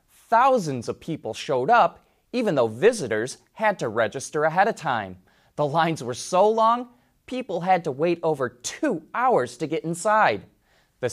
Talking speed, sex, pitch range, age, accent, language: 160 wpm, male, 120-170 Hz, 30-49, American, English